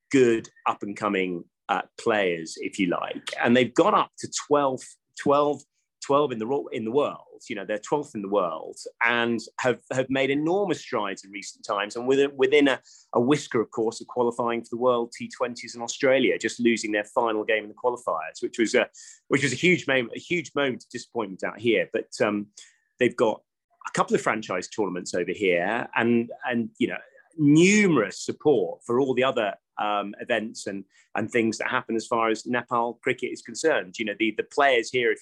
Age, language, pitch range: 30-49, English, 110-140 Hz